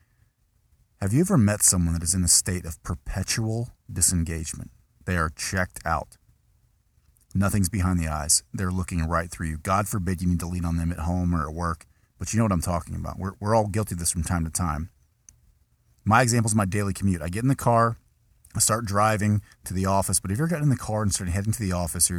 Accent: American